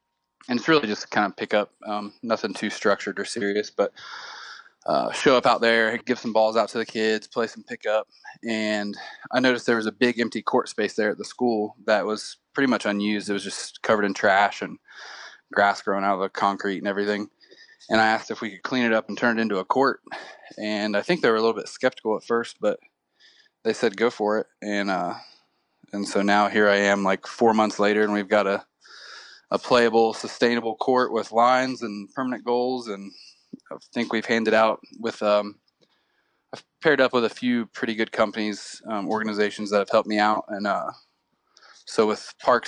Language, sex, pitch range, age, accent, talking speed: English, male, 105-120 Hz, 20-39, American, 210 wpm